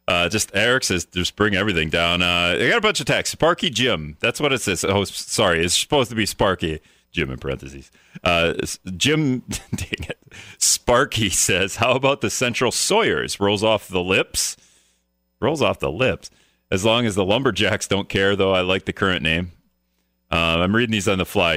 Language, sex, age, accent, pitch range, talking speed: English, male, 40-59, American, 80-110 Hz, 190 wpm